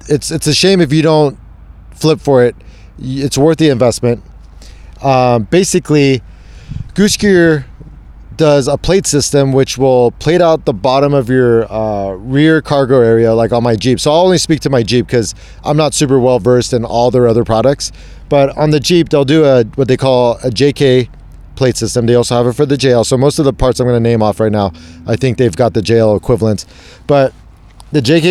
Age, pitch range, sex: 30-49, 110-145 Hz, male